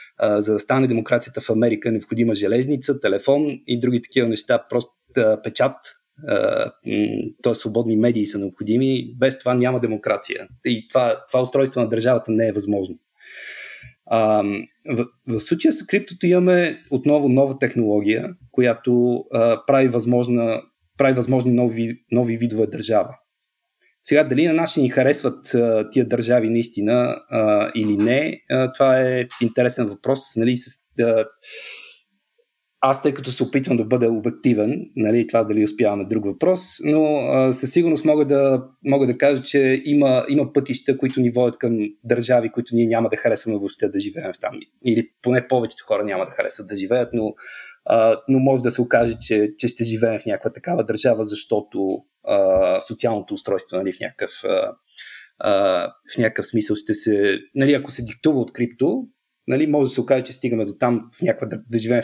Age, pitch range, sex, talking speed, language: 30-49, 115-140 Hz, male, 165 wpm, Bulgarian